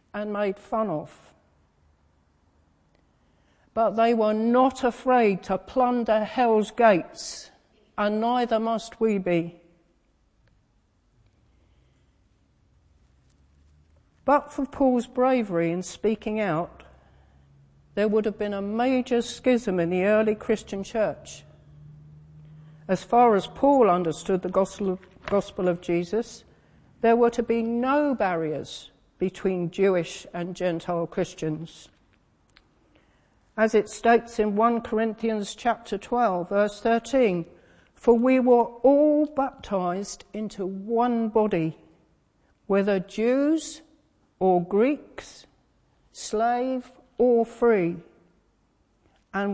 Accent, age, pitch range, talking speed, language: British, 50-69, 155-230 Hz, 100 wpm, English